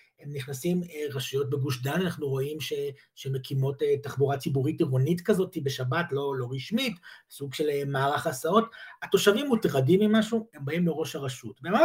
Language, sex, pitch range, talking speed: Hebrew, male, 150-225 Hz, 145 wpm